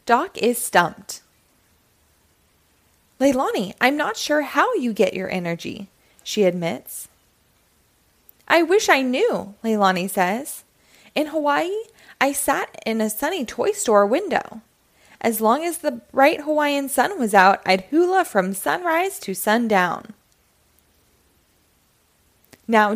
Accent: American